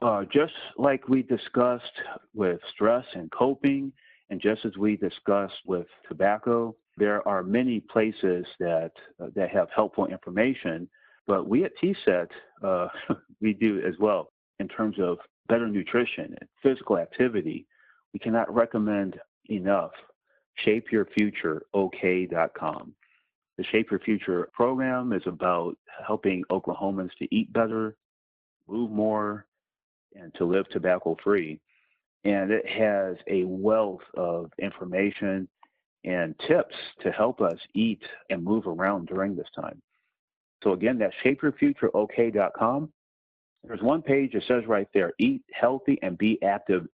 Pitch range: 95-125 Hz